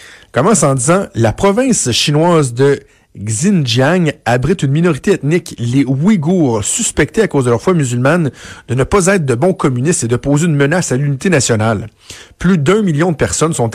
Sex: male